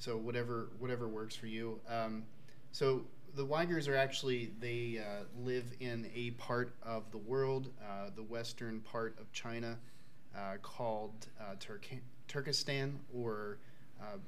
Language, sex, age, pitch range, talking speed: English, male, 30-49, 110-125 Hz, 145 wpm